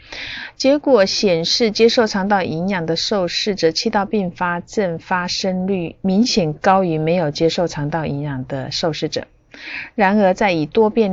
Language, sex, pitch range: Chinese, female, 165-210 Hz